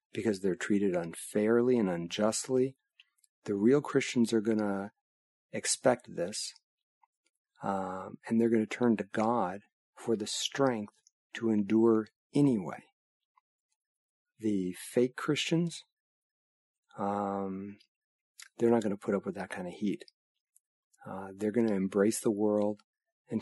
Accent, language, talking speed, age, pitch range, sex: American, English, 130 wpm, 40-59, 100-120 Hz, male